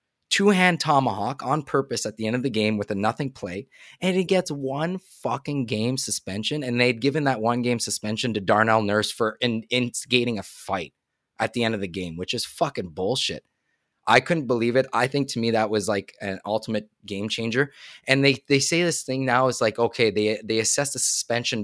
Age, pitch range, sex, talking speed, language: 20-39, 110-145 Hz, male, 210 wpm, English